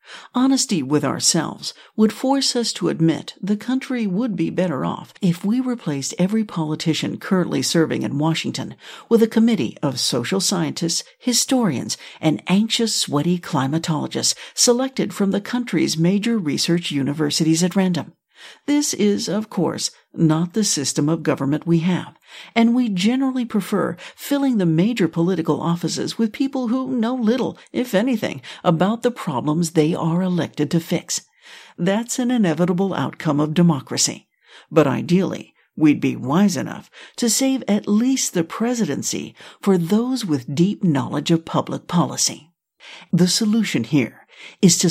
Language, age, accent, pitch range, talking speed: English, 60-79, American, 160-225 Hz, 145 wpm